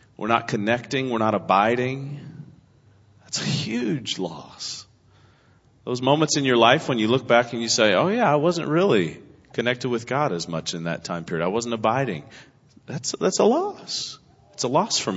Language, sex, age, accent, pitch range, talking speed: English, male, 40-59, American, 110-140 Hz, 190 wpm